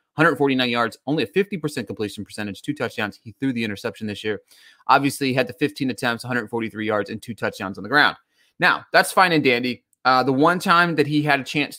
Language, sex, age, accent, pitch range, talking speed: English, male, 30-49, American, 125-170 Hz, 220 wpm